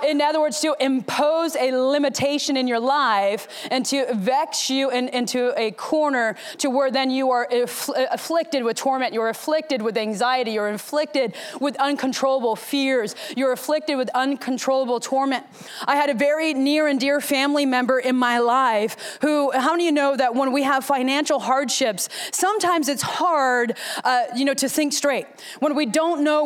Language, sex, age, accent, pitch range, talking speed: English, female, 20-39, American, 245-290 Hz, 175 wpm